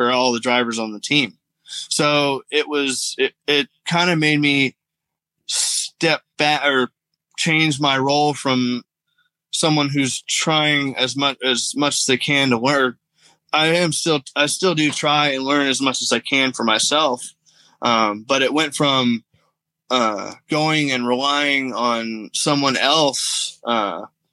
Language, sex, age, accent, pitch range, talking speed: English, male, 20-39, American, 125-150 Hz, 155 wpm